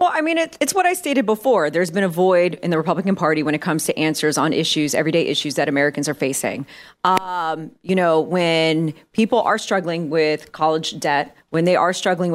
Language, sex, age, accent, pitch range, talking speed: English, female, 30-49, American, 165-240 Hz, 210 wpm